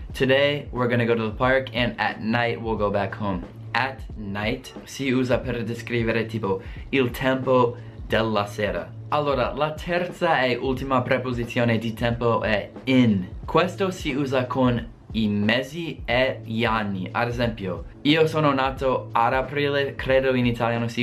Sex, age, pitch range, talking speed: male, 20-39, 110-130 Hz, 155 wpm